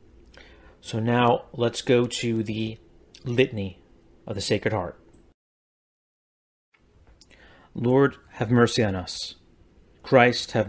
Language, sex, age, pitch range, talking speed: English, male, 30-49, 95-130 Hz, 100 wpm